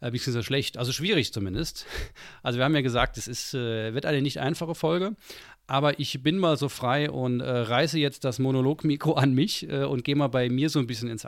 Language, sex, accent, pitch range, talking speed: German, male, German, 115-145 Hz, 235 wpm